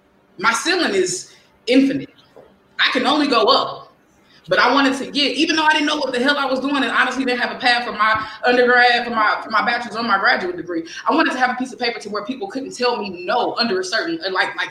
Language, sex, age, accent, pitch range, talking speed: English, female, 20-39, American, 215-270 Hz, 255 wpm